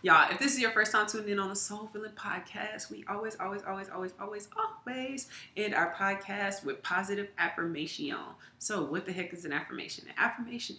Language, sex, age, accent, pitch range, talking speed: English, female, 20-39, American, 160-215 Hz, 200 wpm